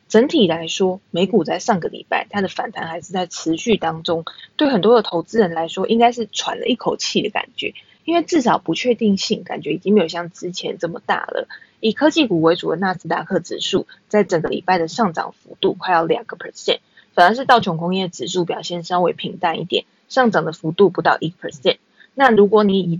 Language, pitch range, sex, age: Chinese, 180-250 Hz, female, 20-39